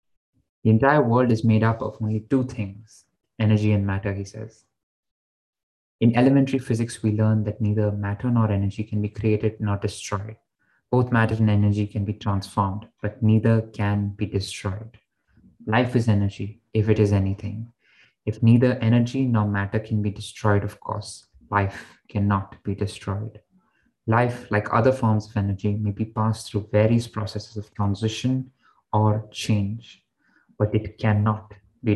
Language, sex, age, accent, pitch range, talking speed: English, male, 20-39, Indian, 105-115 Hz, 155 wpm